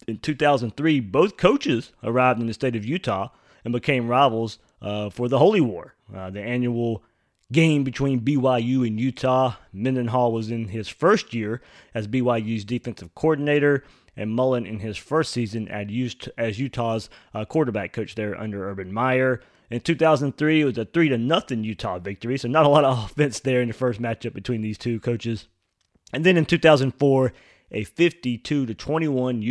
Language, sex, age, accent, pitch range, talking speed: English, male, 30-49, American, 110-140 Hz, 165 wpm